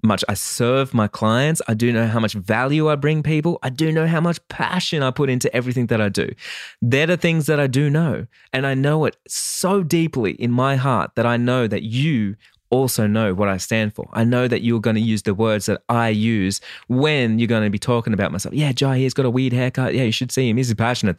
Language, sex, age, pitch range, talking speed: English, male, 20-39, 105-140 Hz, 250 wpm